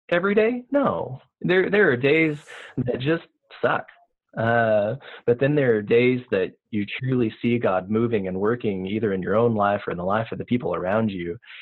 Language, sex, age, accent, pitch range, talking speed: English, male, 20-39, American, 95-125 Hz, 195 wpm